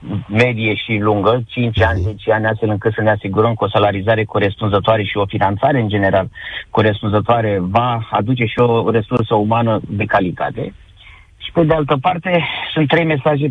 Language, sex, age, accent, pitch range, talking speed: Romanian, male, 30-49, native, 105-130 Hz, 170 wpm